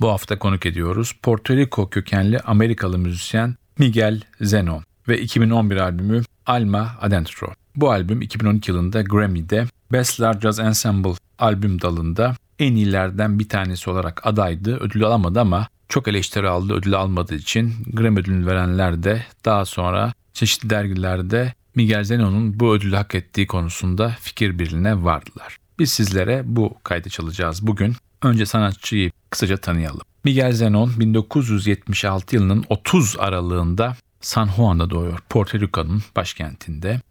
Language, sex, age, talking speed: Turkish, male, 40-59, 130 wpm